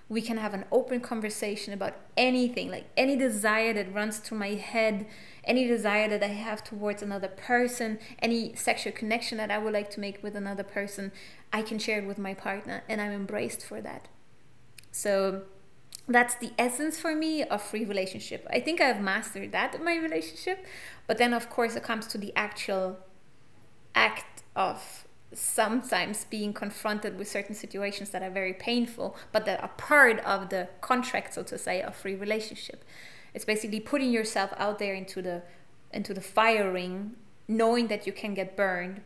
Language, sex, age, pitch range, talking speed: English, female, 20-39, 195-225 Hz, 180 wpm